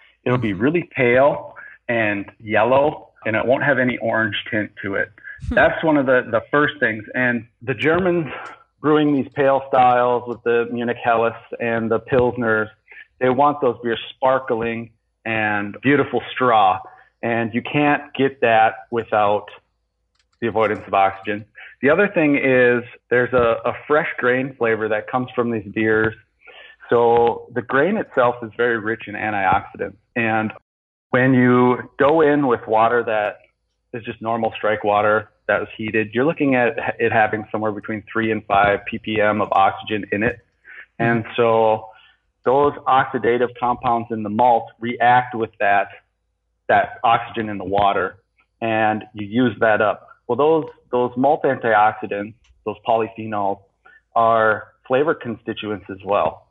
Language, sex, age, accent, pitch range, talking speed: English, male, 30-49, American, 110-125 Hz, 150 wpm